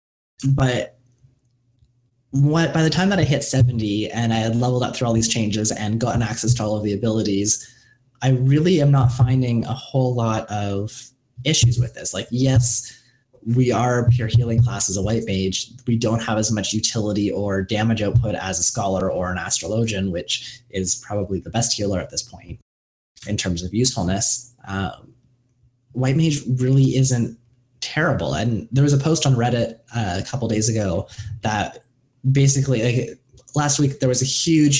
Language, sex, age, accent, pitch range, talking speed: English, male, 20-39, American, 105-125 Hz, 180 wpm